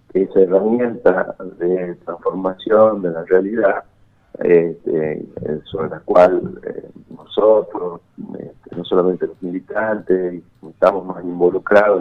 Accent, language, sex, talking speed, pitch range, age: Argentinian, Spanish, male, 105 wpm, 90-110 Hz, 50-69